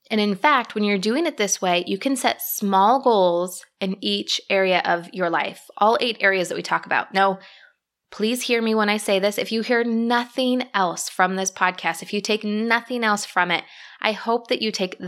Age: 20-39